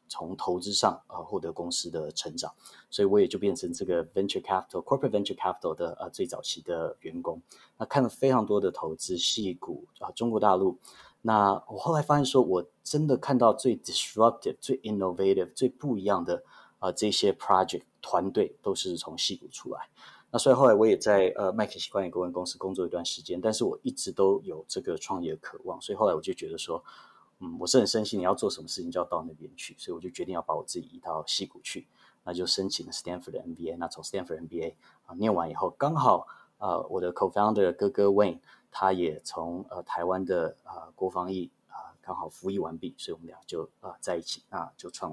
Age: 30-49